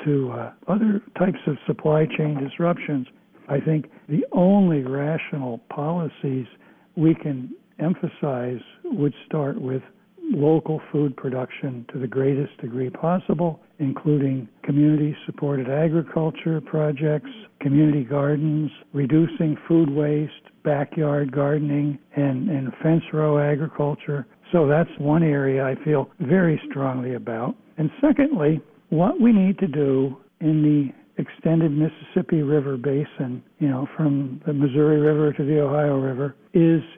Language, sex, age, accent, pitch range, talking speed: English, male, 60-79, American, 140-165 Hz, 125 wpm